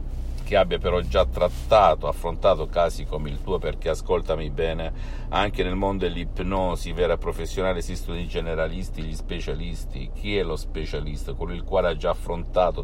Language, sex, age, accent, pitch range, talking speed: Italian, male, 60-79, native, 75-90 Hz, 165 wpm